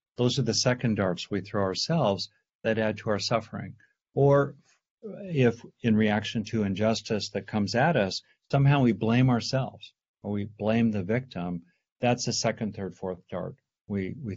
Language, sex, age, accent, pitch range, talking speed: English, male, 50-69, American, 105-130 Hz, 165 wpm